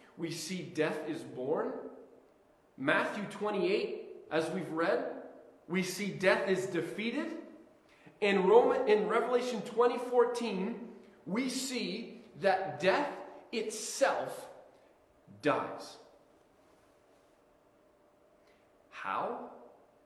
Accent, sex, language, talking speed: American, male, English, 80 wpm